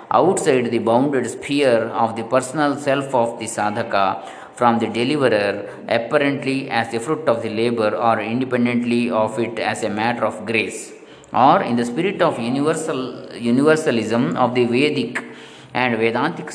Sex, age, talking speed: male, 20-39, 150 wpm